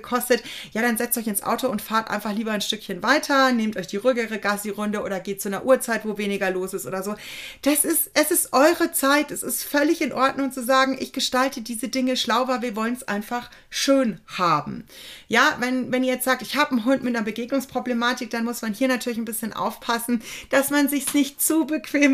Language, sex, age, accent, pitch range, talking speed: German, female, 30-49, German, 210-270 Hz, 220 wpm